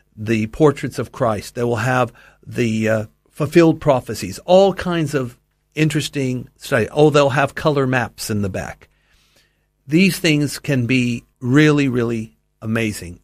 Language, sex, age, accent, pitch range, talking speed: English, male, 60-79, American, 110-145 Hz, 140 wpm